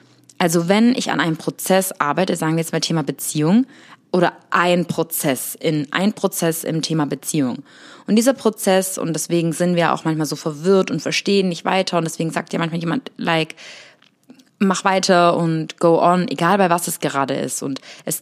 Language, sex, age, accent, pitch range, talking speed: German, female, 20-39, German, 160-195 Hz, 190 wpm